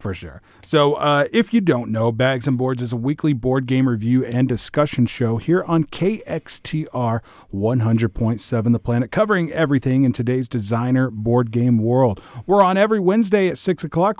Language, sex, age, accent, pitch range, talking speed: English, male, 40-59, American, 120-150 Hz, 175 wpm